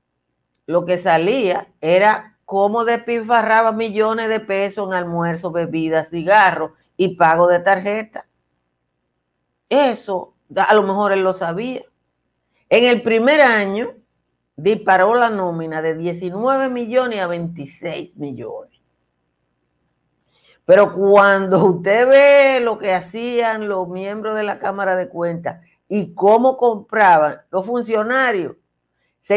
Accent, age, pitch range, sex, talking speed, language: American, 50-69, 155-215 Hz, female, 115 wpm, Spanish